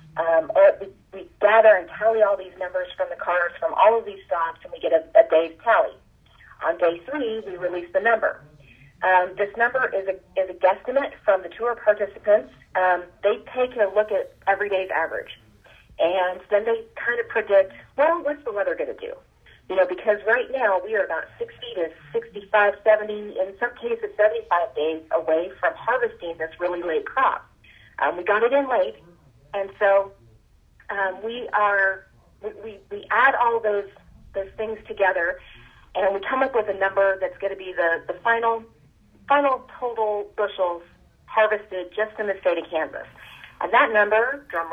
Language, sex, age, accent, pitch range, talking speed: English, female, 40-59, American, 180-230 Hz, 180 wpm